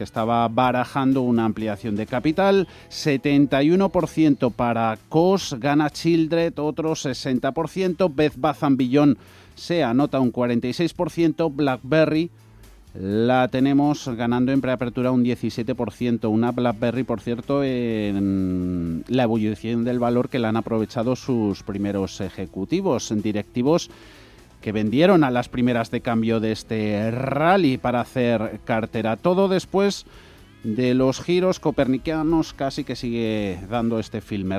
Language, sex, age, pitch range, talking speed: Spanish, male, 30-49, 115-150 Hz, 120 wpm